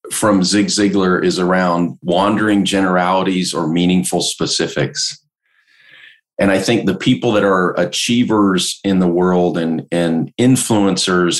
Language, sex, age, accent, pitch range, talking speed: English, male, 40-59, American, 85-105 Hz, 125 wpm